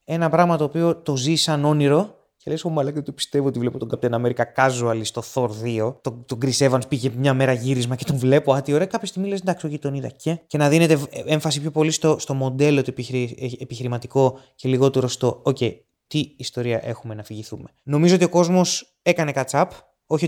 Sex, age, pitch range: male, 20-39, 120-160 Hz